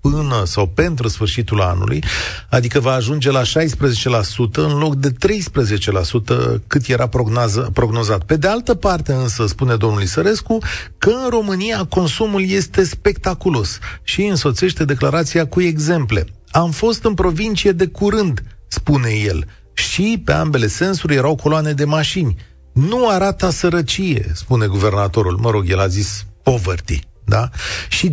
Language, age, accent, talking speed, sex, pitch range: Romanian, 40-59, native, 140 wpm, male, 110-170 Hz